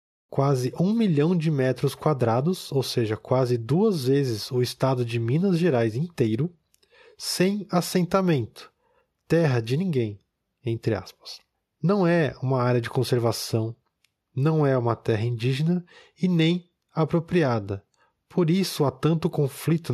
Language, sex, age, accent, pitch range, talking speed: Portuguese, male, 20-39, Brazilian, 120-160 Hz, 130 wpm